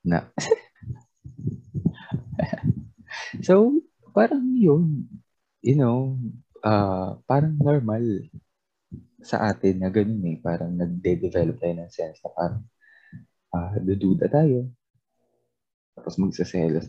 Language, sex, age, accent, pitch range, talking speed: Filipino, male, 20-39, native, 95-135 Hz, 95 wpm